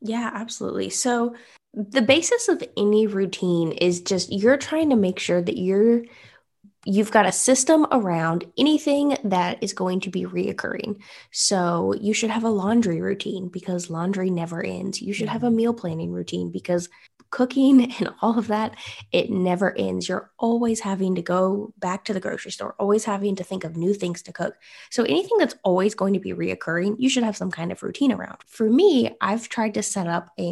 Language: English